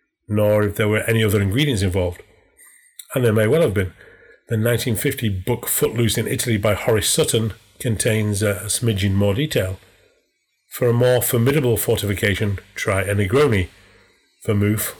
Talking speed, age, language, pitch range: 150 wpm, 30-49, English, 100-115 Hz